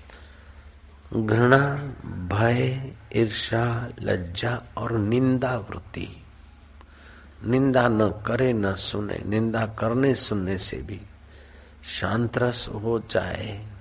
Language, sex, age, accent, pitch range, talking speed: Hindi, male, 50-69, native, 75-115 Hz, 85 wpm